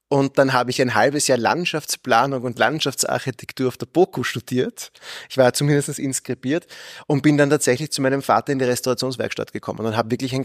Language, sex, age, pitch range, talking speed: German, male, 30-49, 120-150 Hz, 190 wpm